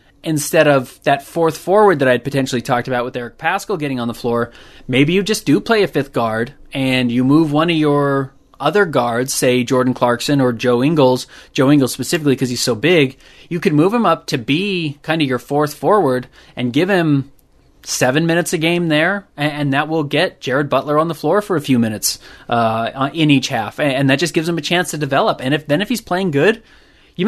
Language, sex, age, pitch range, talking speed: English, male, 20-39, 130-165 Hz, 220 wpm